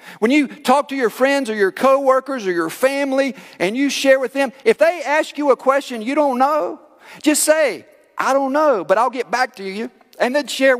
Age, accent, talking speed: 50-69, American, 220 wpm